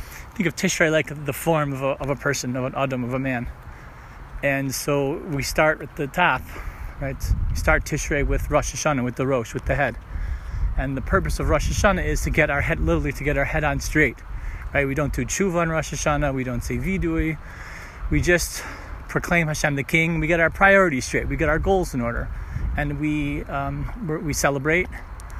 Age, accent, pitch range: 30-49, American, 90-155 Hz